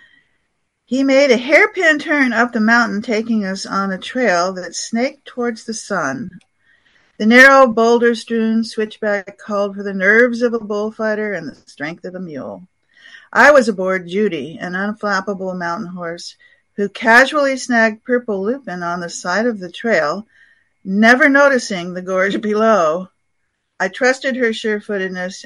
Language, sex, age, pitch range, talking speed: English, female, 50-69, 185-235 Hz, 150 wpm